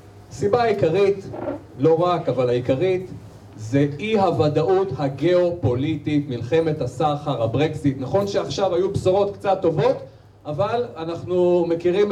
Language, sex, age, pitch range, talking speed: Hebrew, male, 40-59, 125-175 Hz, 105 wpm